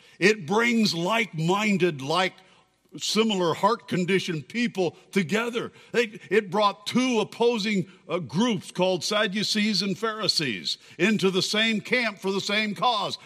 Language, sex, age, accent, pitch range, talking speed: English, male, 60-79, American, 170-220 Hz, 120 wpm